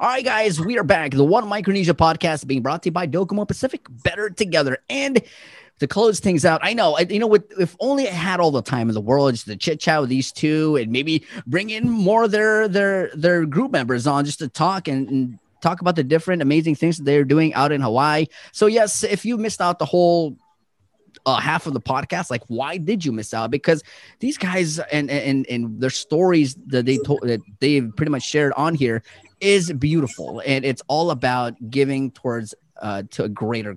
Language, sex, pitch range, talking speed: English, male, 125-175 Hz, 220 wpm